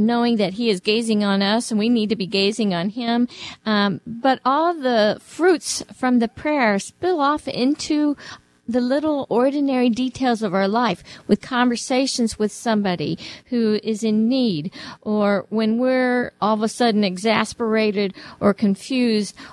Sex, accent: female, American